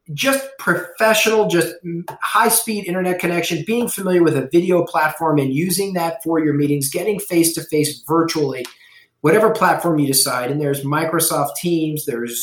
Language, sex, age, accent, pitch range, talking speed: English, male, 40-59, American, 150-195 Hz, 145 wpm